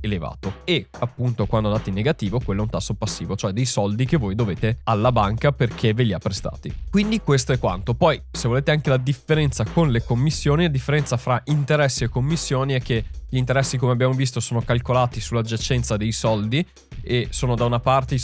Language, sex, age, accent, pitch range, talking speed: Italian, male, 20-39, native, 110-140 Hz, 205 wpm